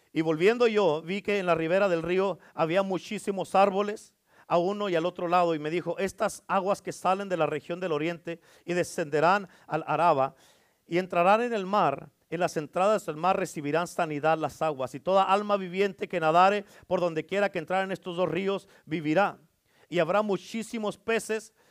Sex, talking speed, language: male, 190 wpm, Spanish